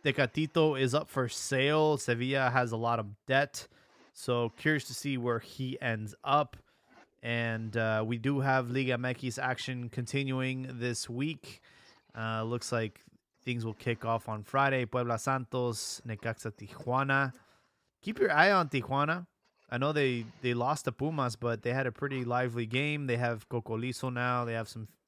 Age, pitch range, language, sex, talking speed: 20-39, 115-135 Hz, English, male, 170 wpm